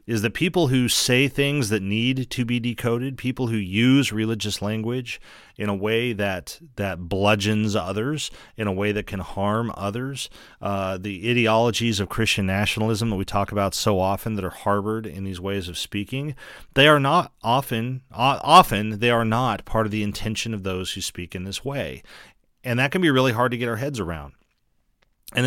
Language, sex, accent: English, male, American